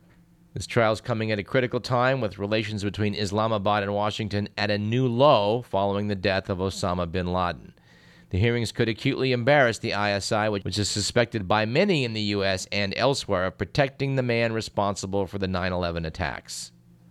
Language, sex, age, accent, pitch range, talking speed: English, male, 40-59, American, 95-120 Hz, 180 wpm